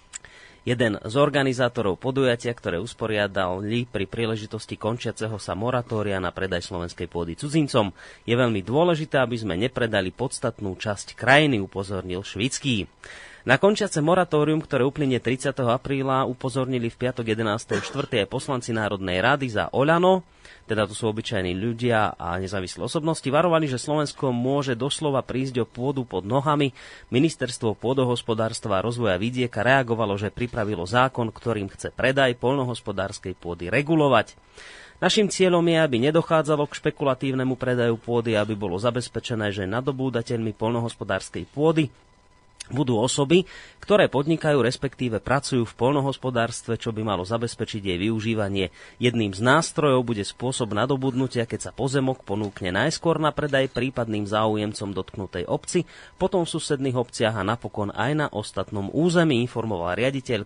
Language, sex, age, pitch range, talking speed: Slovak, male, 30-49, 105-135 Hz, 135 wpm